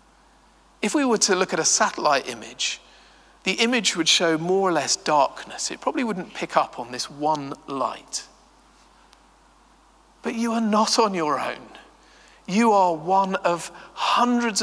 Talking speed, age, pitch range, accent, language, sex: 155 wpm, 40-59, 175-220 Hz, British, English, male